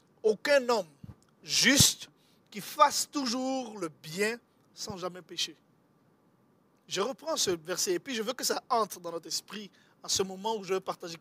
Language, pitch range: French, 180-265 Hz